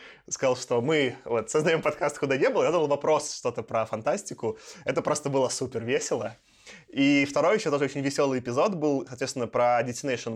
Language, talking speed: Russian, 190 wpm